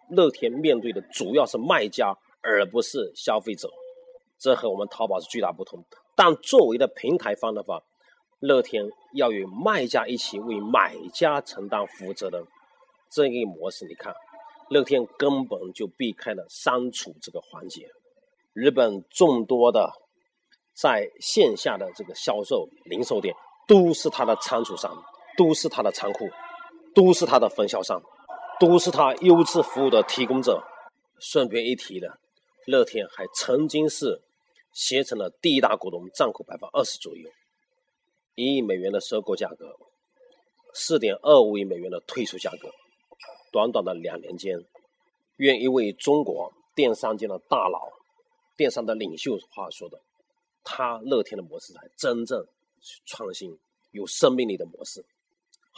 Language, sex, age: Chinese, male, 40-59